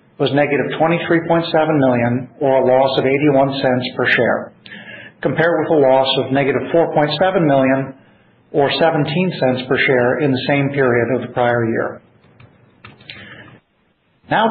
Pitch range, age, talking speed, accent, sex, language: 130-160 Hz, 50-69, 140 wpm, American, male, English